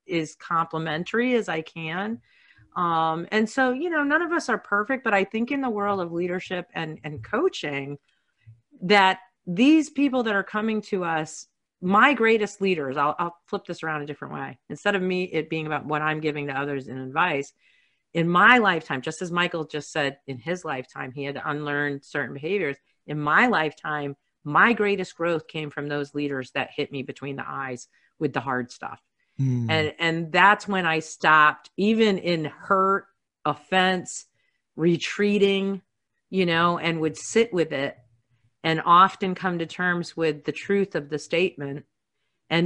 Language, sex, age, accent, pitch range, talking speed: English, female, 40-59, American, 150-195 Hz, 175 wpm